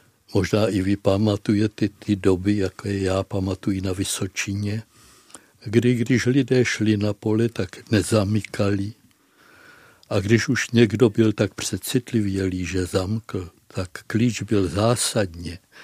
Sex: male